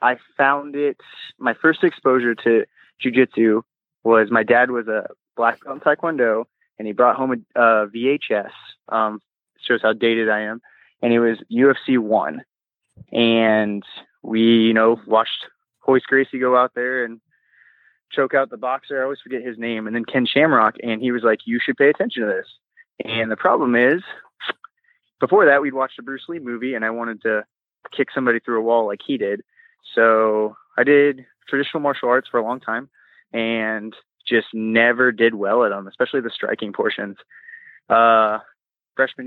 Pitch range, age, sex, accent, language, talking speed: 115-140 Hz, 20-39, male, American, English, 175 wpm